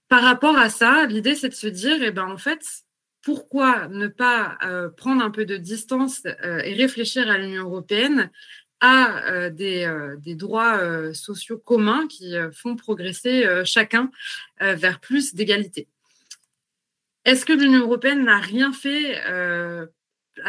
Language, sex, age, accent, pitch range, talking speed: French, female, 20-39, French, 180-240 Hz, 160 wpm